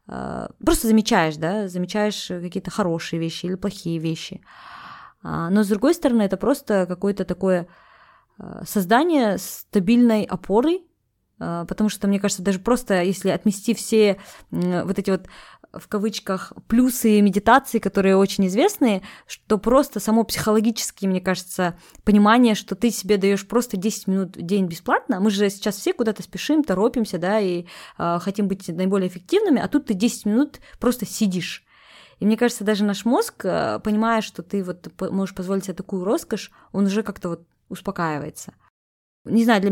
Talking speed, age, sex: 155 wpm, 20-39, female